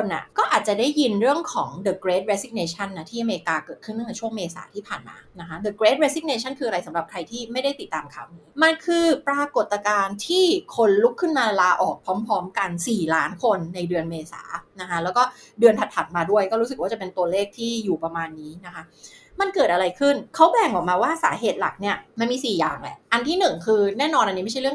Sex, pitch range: female, 185-265 Hz